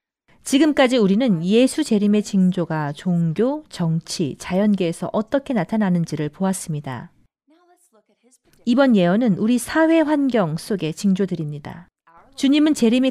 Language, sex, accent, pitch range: Korean, female, native, 175-245 Hz